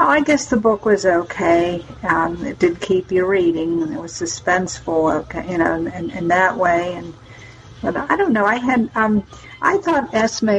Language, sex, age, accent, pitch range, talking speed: English, female, 60-79, American, 170-210 Hz, 205 wpm